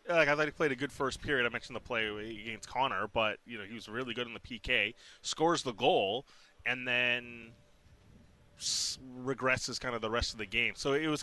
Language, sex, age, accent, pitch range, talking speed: English, male, 20-39, American, 105-135 Hz, 220 wpm